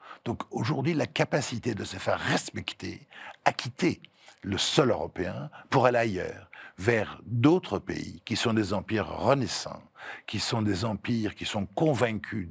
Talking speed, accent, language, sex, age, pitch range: 150 wpm, French, French, male, 60-79, 100-140 Hz